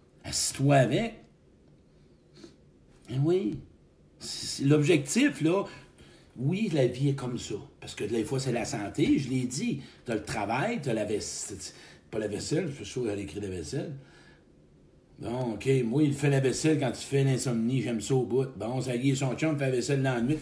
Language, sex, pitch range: French, male, 130-165 Hz